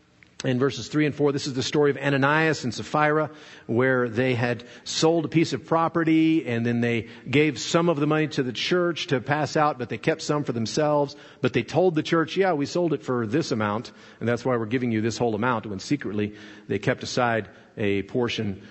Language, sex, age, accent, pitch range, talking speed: English, male, 50-69, American, 120-165 Hz, 220 wpm